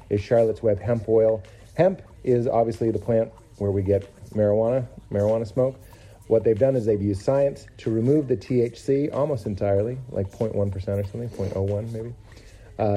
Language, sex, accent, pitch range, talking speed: English, male, American, 100-115 Hz, 165 wpm